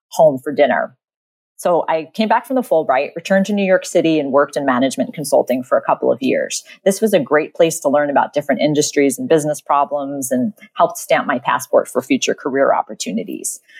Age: 30-49